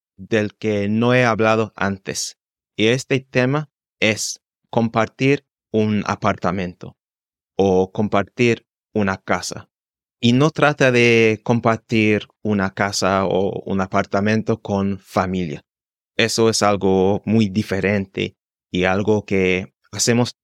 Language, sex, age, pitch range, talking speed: Spanish, male, 30-49, 100-120 Hz, 110 wpm